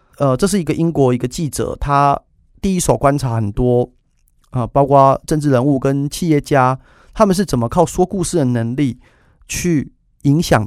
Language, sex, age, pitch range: Chinese, male, 30-49, 115-155 Hz